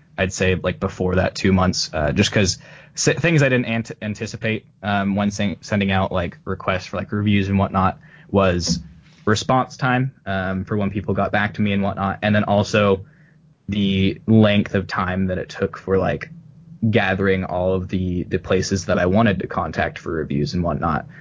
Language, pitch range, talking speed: English, 95-115 Hz, 190 wpm